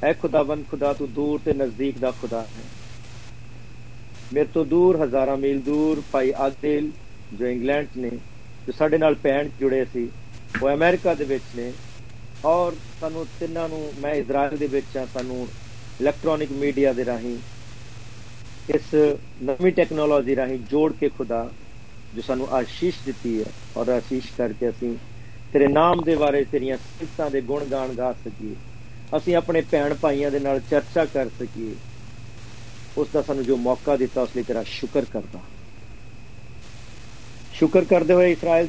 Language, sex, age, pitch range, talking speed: Punjabi, male, 50-69, 120-145 Hz, 145 wpm